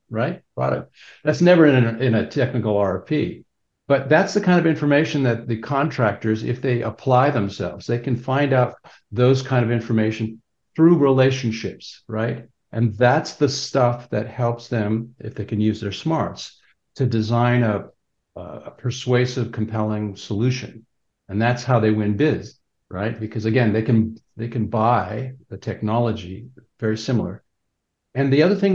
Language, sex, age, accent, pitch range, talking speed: English, male, 60-79, American, 110-135 Hz, 160 wpm